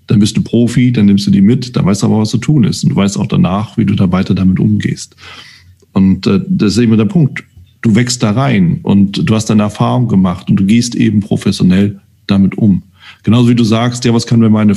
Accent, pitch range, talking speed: German, 100-125 Hz, 245 wpm